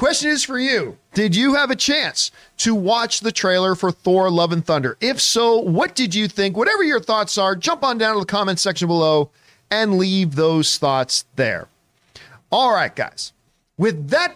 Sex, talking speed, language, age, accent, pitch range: male, 190 wpm, English, 40-59, American, 160-215 Hz